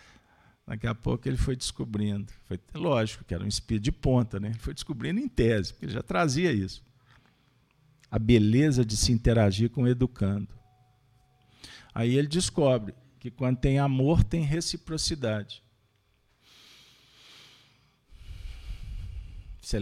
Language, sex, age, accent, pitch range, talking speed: Portuguese, male, 50-69, Brazilian, 90-125 Hz, 130 wpm